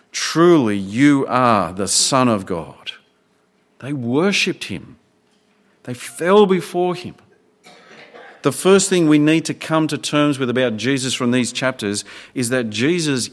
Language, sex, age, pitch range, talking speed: English, male, 50-69, 110-150 Hz, 145 wpm